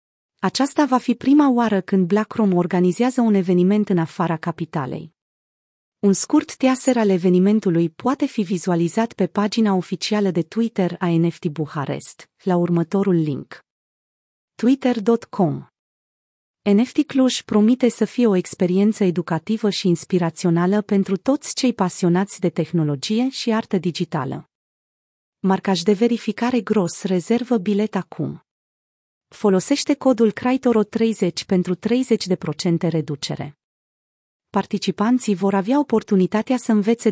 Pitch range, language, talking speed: 175-225 Hz, Romanian, 115 wpm